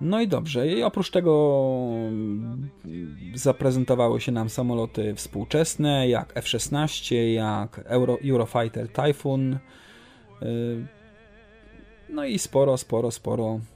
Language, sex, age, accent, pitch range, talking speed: English, male, 30-49, Polish, 115-140 Hz, 95 wpm